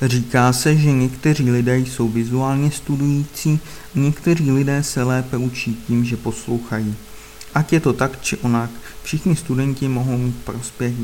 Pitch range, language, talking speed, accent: 110-130 Hz, Czech, 145 wpm, native